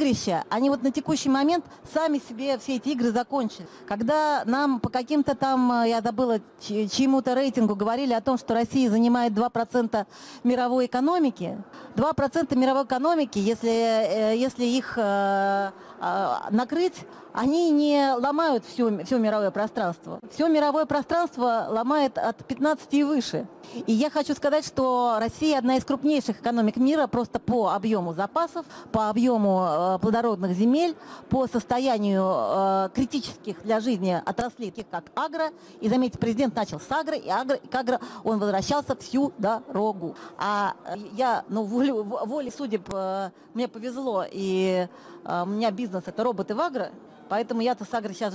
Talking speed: 145 wpm